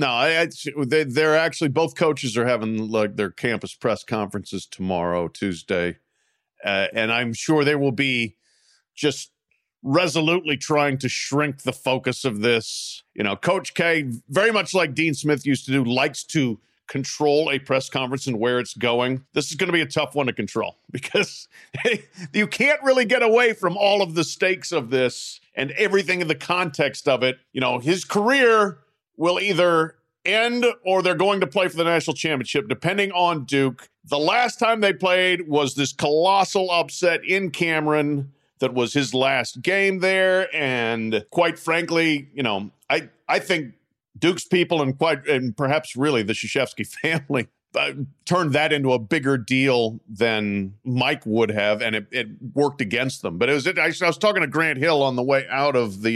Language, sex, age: English, male, 50-69